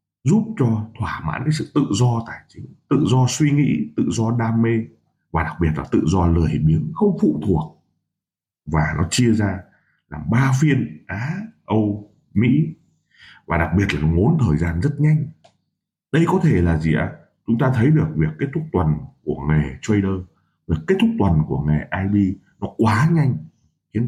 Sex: male